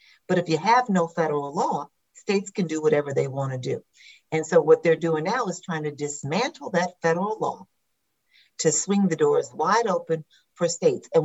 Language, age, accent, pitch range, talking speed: English, 50-69, American, 160-245 Hz, 195 wpm